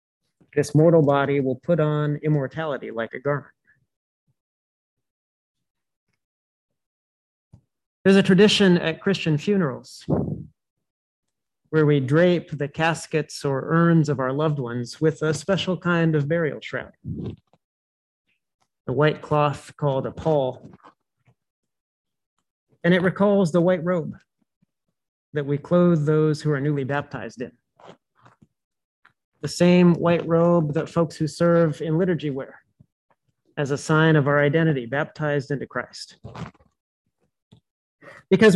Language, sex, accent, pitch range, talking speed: English, male, American, 140-170 Hz, 120 wpm